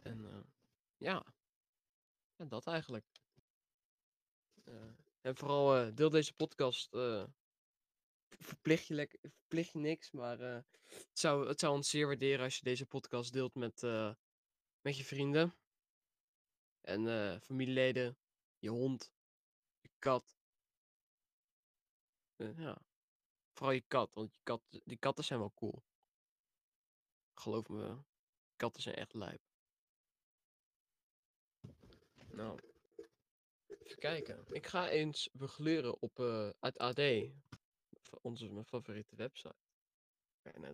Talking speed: 115 wpm